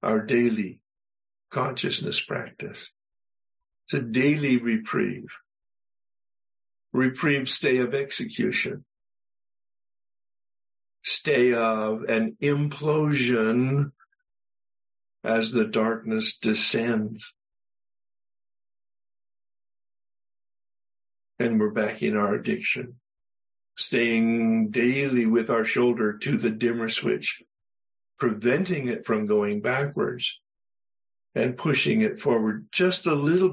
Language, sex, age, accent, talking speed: English, male, 60-79, American, 85 wpm